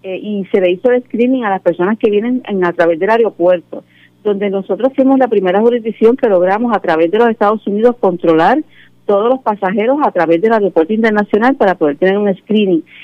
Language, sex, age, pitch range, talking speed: Spanish, female, 50-69, 180-245 Hz, 205 wpm